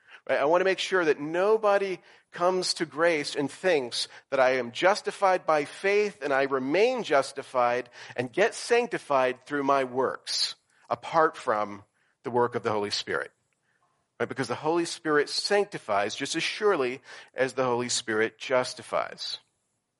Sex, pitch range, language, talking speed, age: male, 135-195 Hz, English, 145 wpm, 40-59